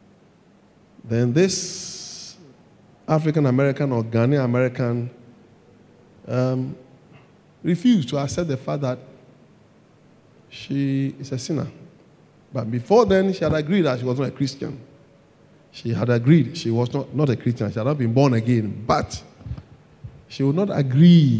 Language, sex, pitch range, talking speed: English, male, 130-190 Hz, 135 wpm